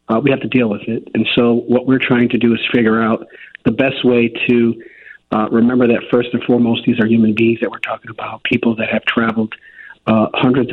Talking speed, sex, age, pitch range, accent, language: 230 wpm, male, 40-59, 110-125 Hz, American, English